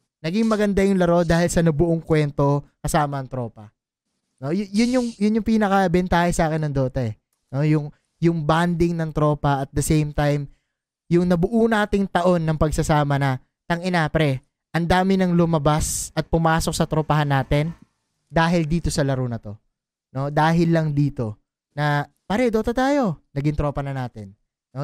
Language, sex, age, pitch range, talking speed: Filipino, male, 20-39, 135-170 Hz, 170 wpm